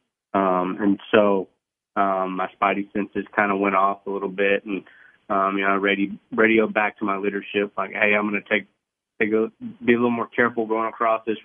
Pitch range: 100-110 Hz